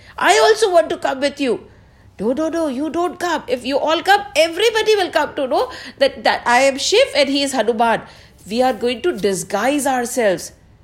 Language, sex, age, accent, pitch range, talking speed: English, female, 50-69, Indian, 230-350 Hz, 205 wpm